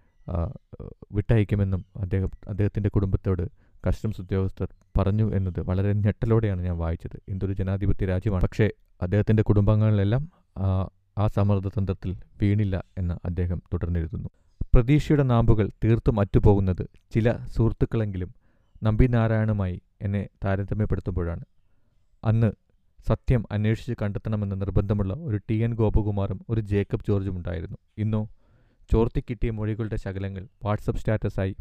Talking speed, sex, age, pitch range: 100 wpm, male, 30-49, 95-115 Hz